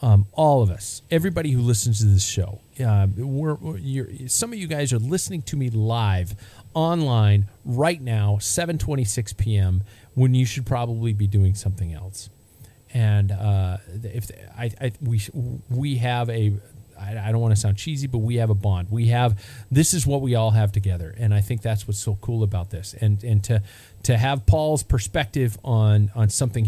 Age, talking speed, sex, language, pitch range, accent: 40-59, 195 wpm, male, English, 100-125 Hz, American